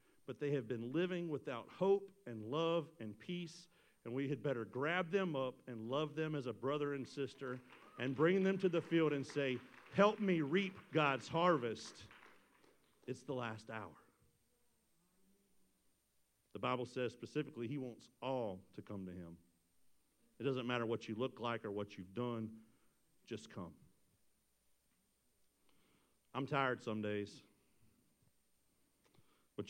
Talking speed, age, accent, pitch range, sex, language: 145 wpm, 50-69, American, 110-145 Hz, male, English